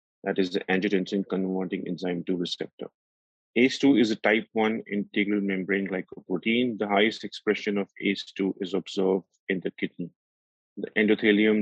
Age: 30-49